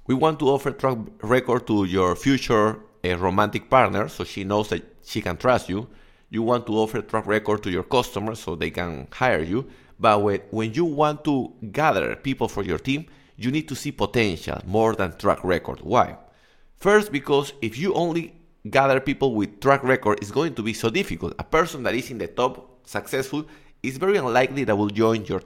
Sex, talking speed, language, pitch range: male, 205 wpm, English, 105-145 Hz